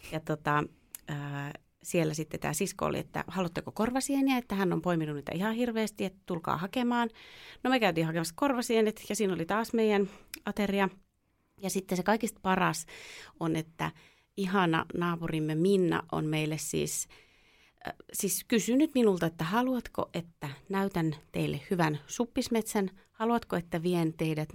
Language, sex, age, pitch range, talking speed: Finnish, female, 30-49, 155-210 Hz, 145 wpm